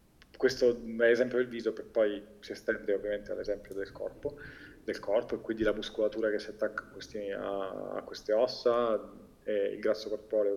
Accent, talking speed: native, 175 wpm